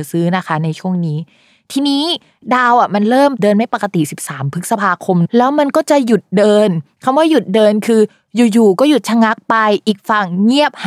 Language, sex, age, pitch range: Thai, female, 20-39, 185-245 Hz